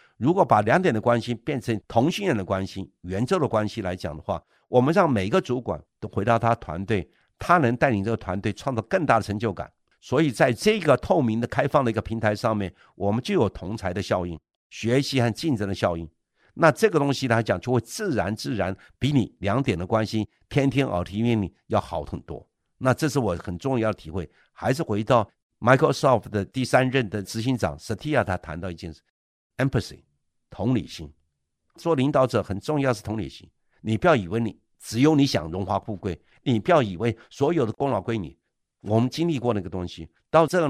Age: 50-69